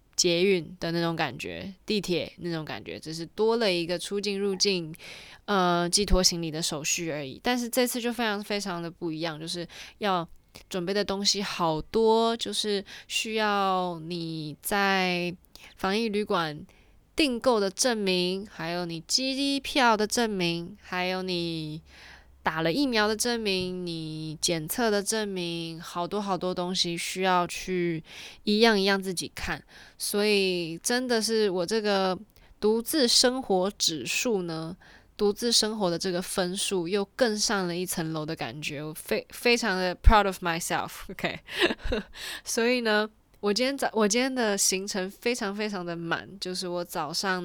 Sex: female